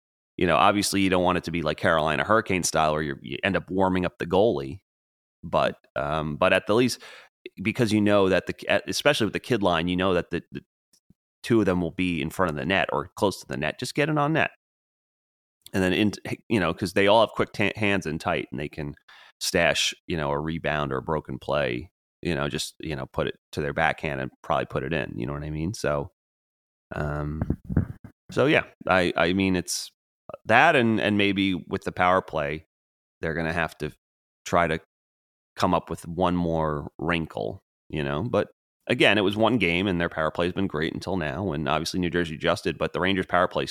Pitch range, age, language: 80-95 Hz, 30-49, English